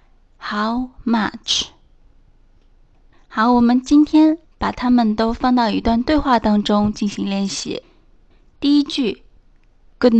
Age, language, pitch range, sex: 20-39, Chinese, 210-270 Hz, female